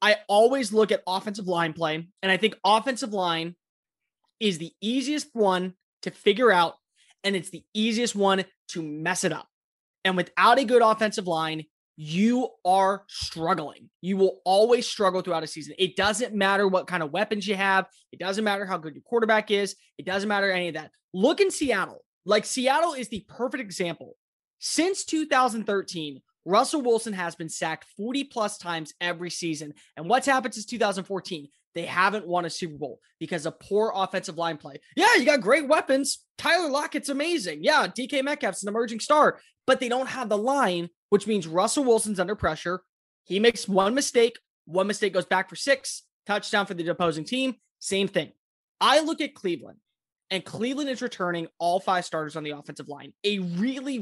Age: 20-39